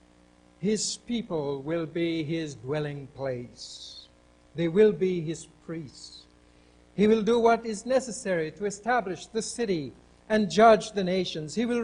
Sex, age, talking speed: male, 60-79, 140 wpm